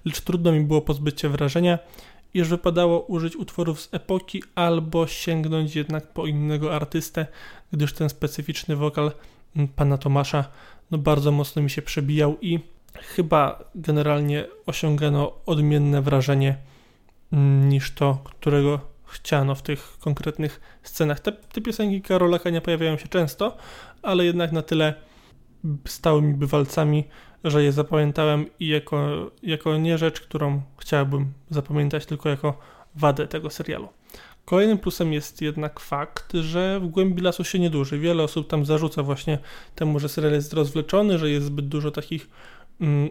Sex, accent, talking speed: male, native, 145 wpm